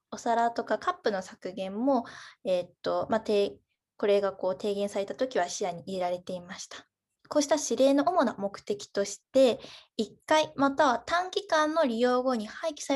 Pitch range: 200-285 Hz